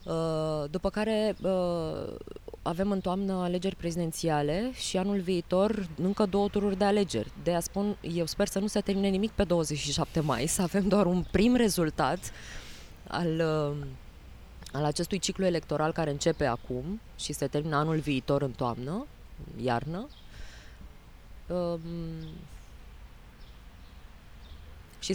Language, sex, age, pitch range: Romanian, female, 20-39, 135-190 Hz